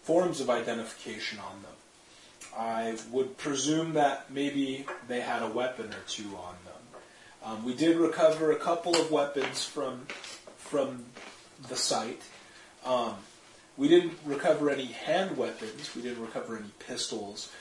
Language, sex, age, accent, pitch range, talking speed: English, male, 30-49, American, 115-155 Hz, 145 wpm